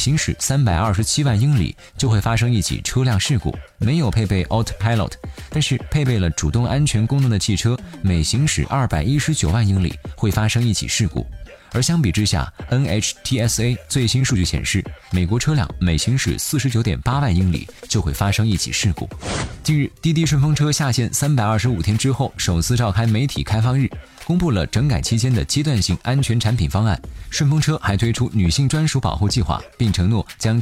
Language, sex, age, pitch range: Chinese, male, 20-39, 95-135 Hz